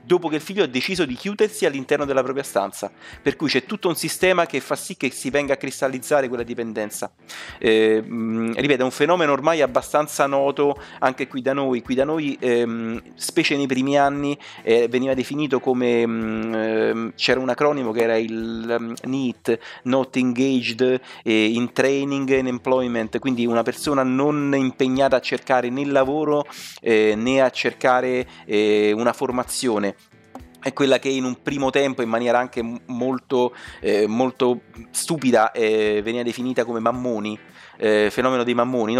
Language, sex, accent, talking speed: Italian, male, native, 160 wpm